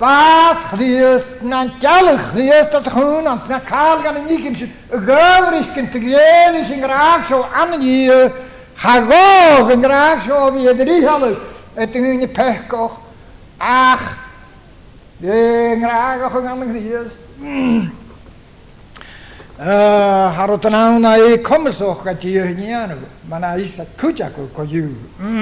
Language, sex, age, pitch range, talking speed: English, male, 60-79, 205-275 Hz, 65 wpm